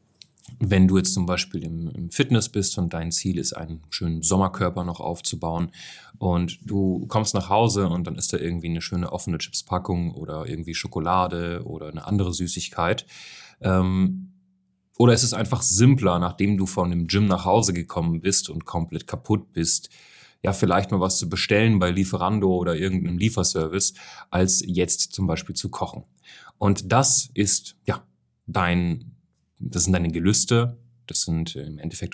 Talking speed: 160 wpm